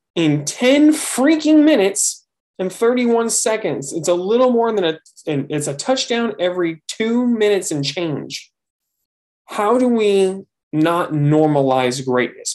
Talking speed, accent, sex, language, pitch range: 130 wpm, American, male, English, 135-175 Hz